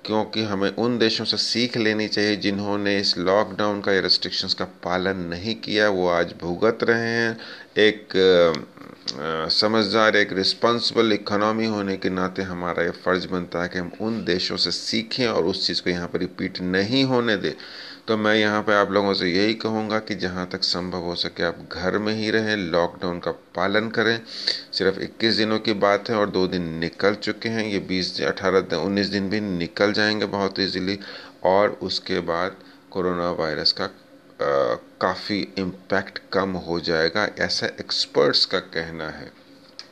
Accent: native